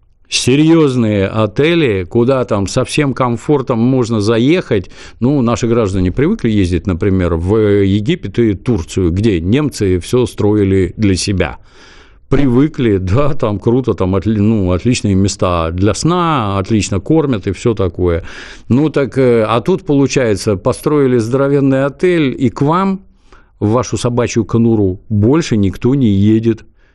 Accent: native